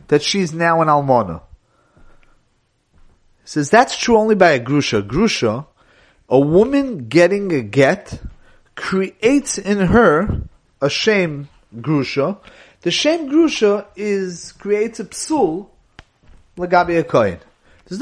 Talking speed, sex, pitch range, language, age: 115 wpm, male, 140-195 Hz, English, 30-49